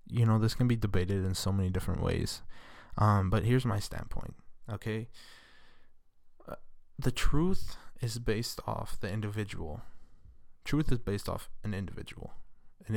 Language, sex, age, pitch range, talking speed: English, male, 20-39, 95-115 Hz, 150 wpm